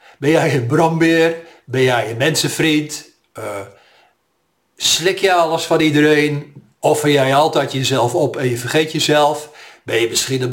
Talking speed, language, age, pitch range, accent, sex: 155 wpm, Dutch, 50-69, 130-160 Hz, Dutch, male